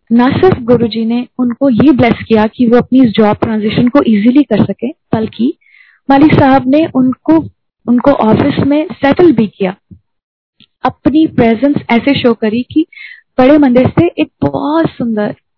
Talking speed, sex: 160 wpm, female